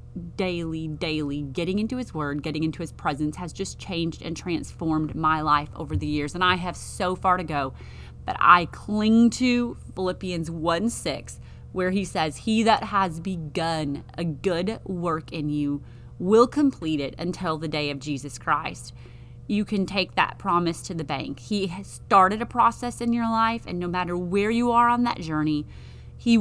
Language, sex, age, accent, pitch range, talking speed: English, female, 30-49, American, 155-195 Hz, 185 wpm